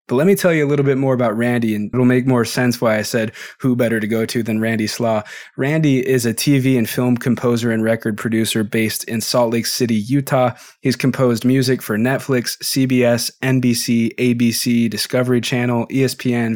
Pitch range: 115-135 Hz